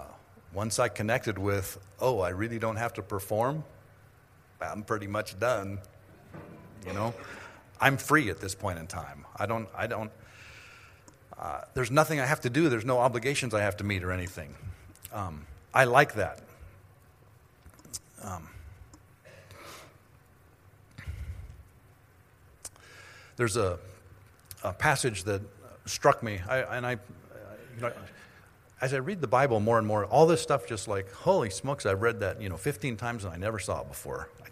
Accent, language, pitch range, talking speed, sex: American, English, 95-125 Hz, 155 wpm, male